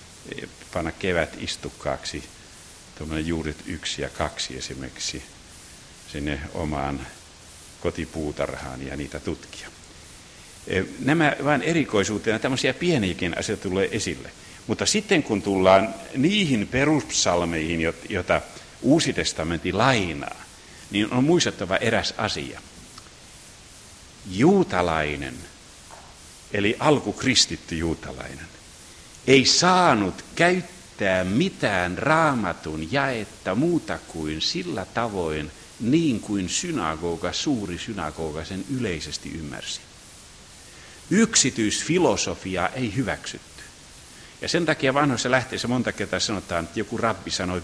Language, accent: Finnish, native